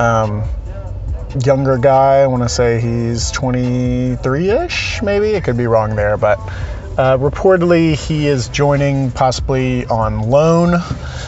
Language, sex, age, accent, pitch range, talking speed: English, male, 30-49, American, 105-135 Hz, 130 wpm